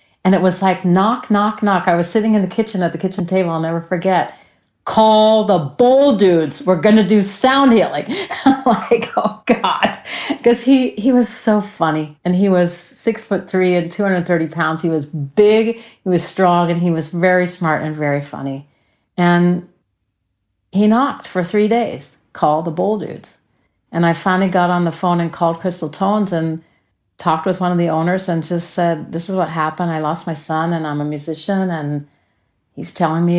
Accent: American